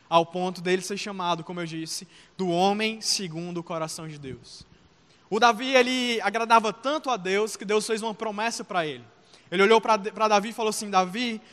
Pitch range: 185-225 Hz